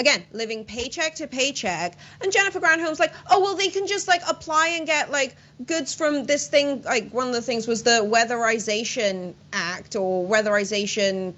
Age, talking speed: 30-49, 180 wpm